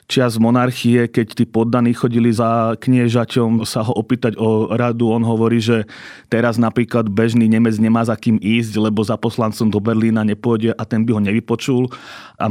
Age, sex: 30-49, male